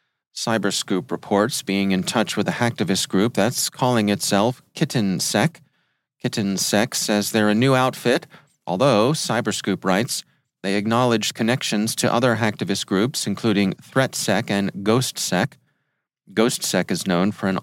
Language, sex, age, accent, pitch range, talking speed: English, male, 40-59, American, 100-130 Hz, 130 wpm